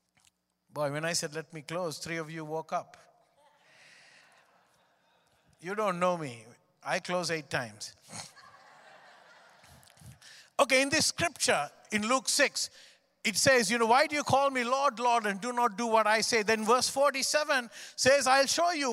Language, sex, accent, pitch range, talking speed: English, male, Indian, 190-280 Hz, 165 wpm